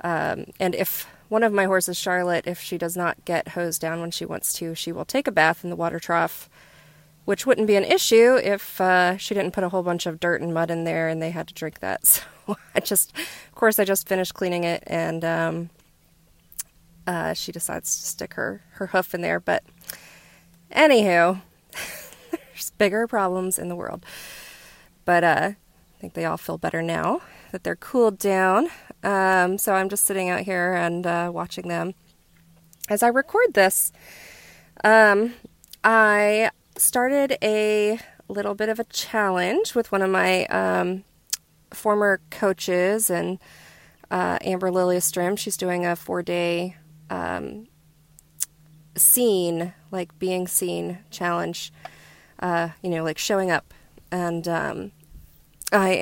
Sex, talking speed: female, 160 wpm